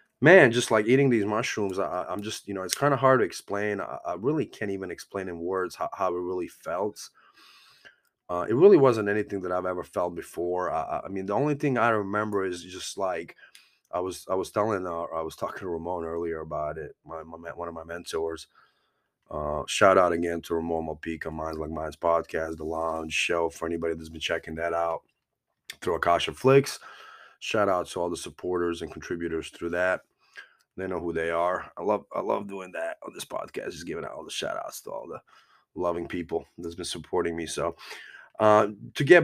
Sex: male